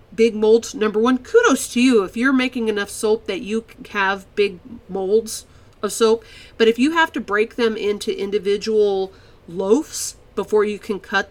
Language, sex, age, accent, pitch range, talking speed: English, female, 40-59, American, 205-255 Hz, 175 wpm